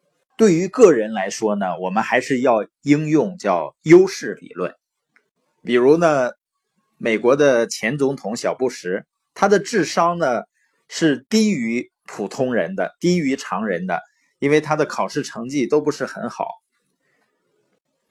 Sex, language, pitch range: male, Chinese, 130-210 Hz